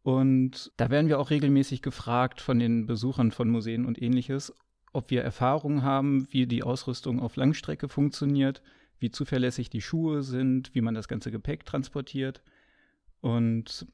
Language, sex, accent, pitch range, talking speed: German, male, German, 115-135 Hz, 155 wpm